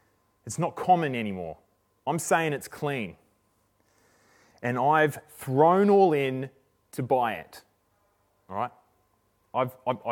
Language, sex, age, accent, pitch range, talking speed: English, male, 20-39, Australian, 110-140 Hz, 120 wpm